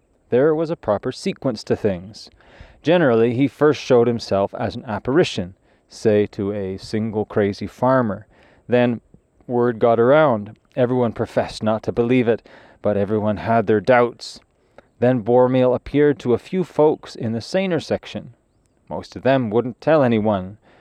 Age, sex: 30-49, male